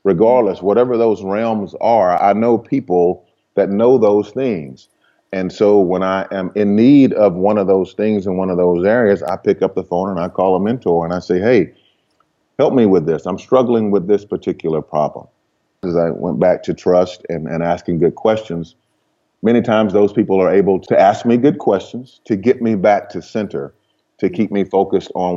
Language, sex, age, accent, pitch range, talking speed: English, male, 40-59, American, 85-105 Hz, 205 wpm